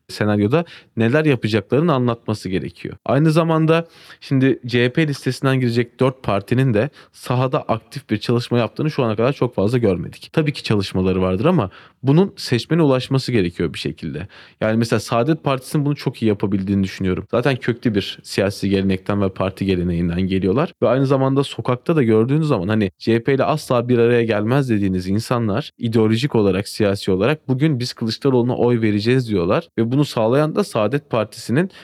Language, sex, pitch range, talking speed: Turkish, male, 100-135 Hz, 165 wpm